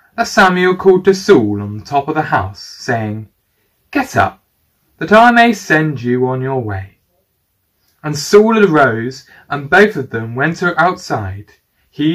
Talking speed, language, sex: 165 wpm, English, male